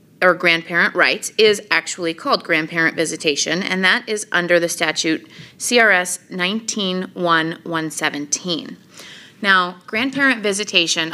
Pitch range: 170-205 Hz